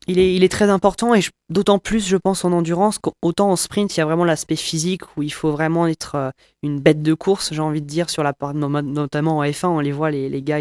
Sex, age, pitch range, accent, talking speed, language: female, 20-39, 140-165 Hz, French, 270 wpm, French